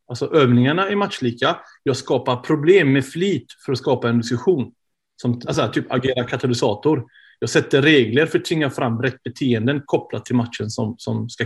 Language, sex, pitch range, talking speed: Swedish, male, 120-140 Hz, 175 wpm